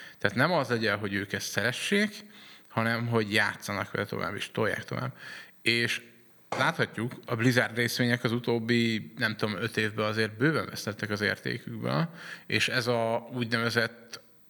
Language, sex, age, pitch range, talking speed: Hungarian, male, 30-49, 110-125 Hz, 150 wpm